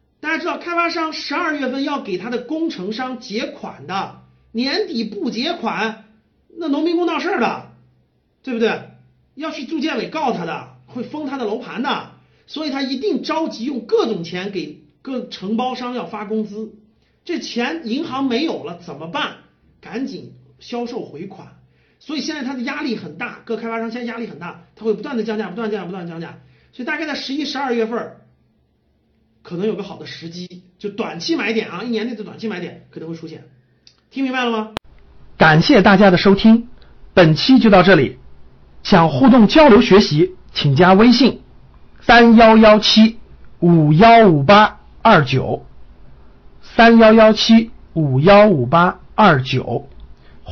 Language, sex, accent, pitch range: Chinese, male, native, 175-255 Hz